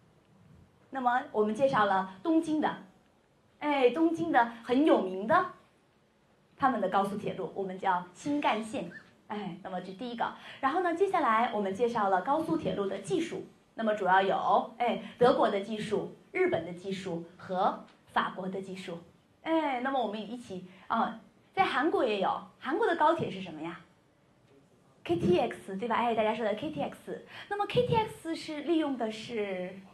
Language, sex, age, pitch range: Korean, female, 20-39, 195-295 Hz